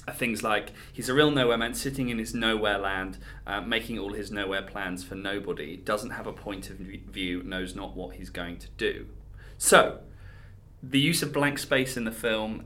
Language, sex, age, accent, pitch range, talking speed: English, male, 20-39, British, 95-125 Hz, 205 wpm